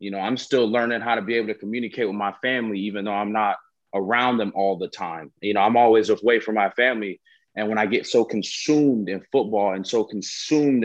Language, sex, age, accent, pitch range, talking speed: English, male, 20-39, American, 105-155 Hz, 230 wpm